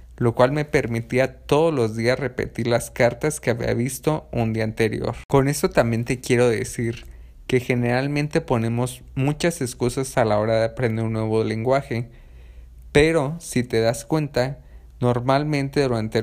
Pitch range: 110-130 Hz